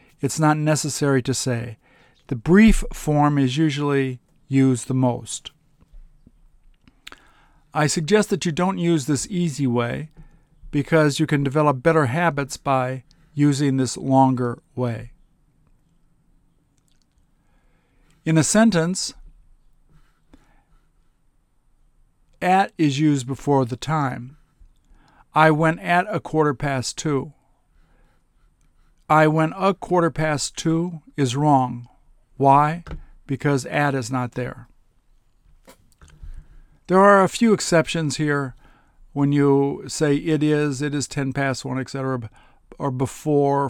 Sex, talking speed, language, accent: male, 115 wpm, English, American